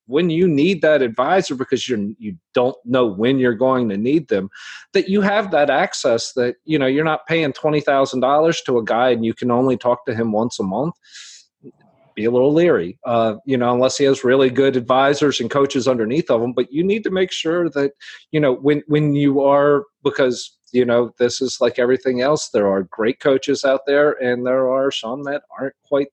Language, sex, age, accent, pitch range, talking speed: English, male, 40-59, American, 120-145 Hz, 215 wpm